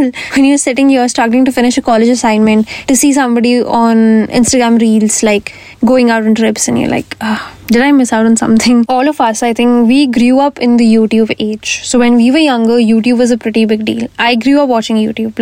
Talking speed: 225 wpm